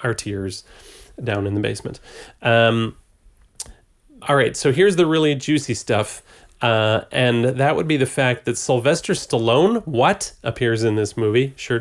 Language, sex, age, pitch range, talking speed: English, male, 30-49, 105-135 Hz, 150 wpm